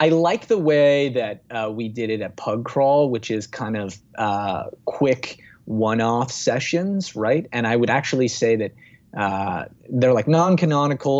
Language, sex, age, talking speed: English, male, 20-39, 165 wpm